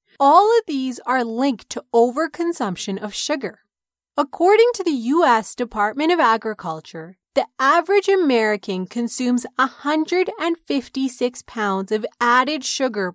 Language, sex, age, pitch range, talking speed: English, female, 30-49, 205-310 Hz, 115 wpm